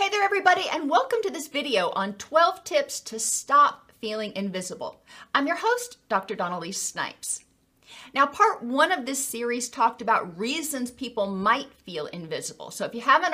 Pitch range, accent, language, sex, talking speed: 215-295 Hz, American, English, female, 170 wpm